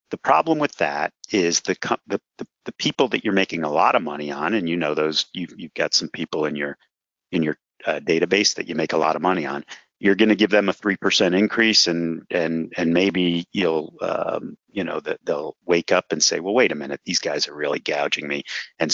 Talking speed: 240 wpm